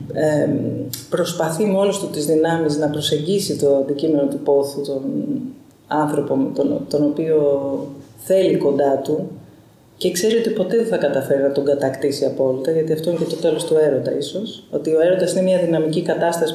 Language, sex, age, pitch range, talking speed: Greek, female, 30-49, 150-205 Hz, 170 wpm